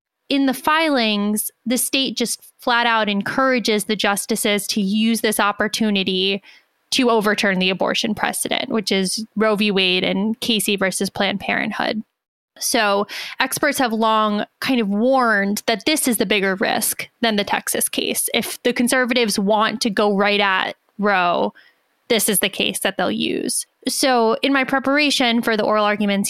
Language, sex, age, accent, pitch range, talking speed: English, female, 10-29, American, 210-250 Hz, 160 wpm